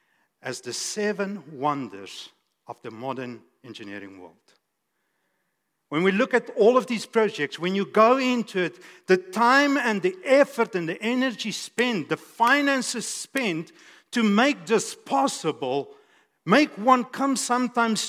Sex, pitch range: male, 180-260 Hz